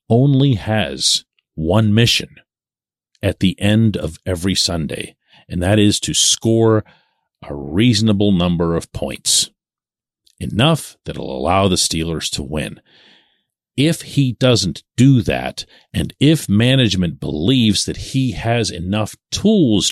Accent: American